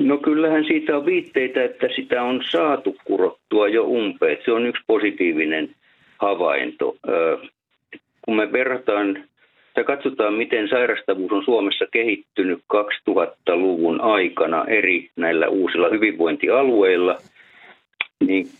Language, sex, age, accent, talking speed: Finnish, male, 50-69, native, 110 wpm